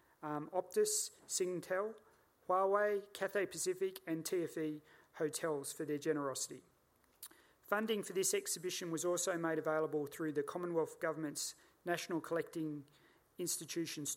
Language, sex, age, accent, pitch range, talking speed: English, male, 40-59, Australian, 150-190 Hz, 115 wpm